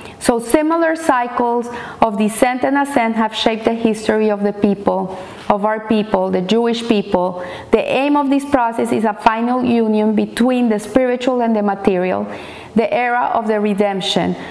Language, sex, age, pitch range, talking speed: English, female, 30-49, 215-265 Hz, 165 wpm